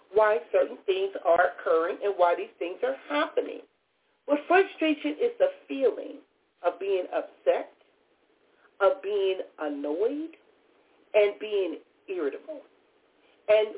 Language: English